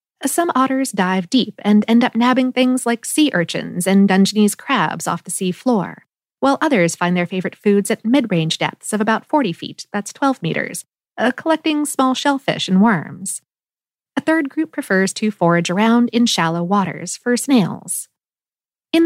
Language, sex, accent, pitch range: English, female, American, 185-260 Hz